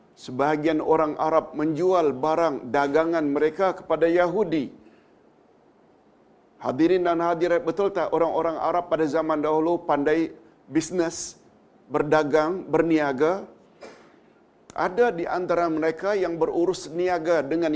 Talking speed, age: 105 wpm, 50-69